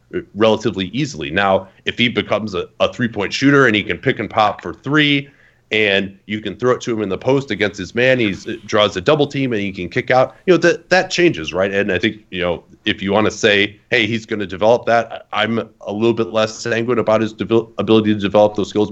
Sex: male